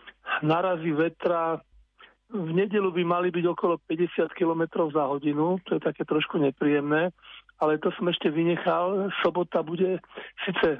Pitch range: 155-180 Hz